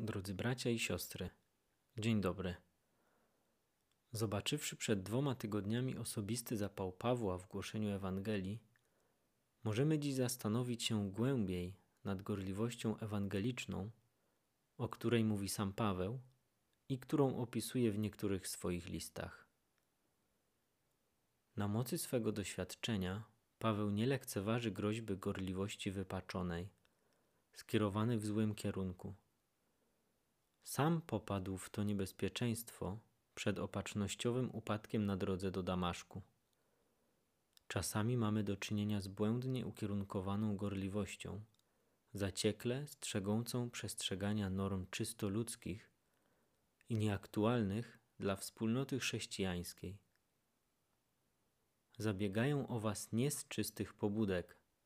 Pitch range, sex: 100-115 Hz, male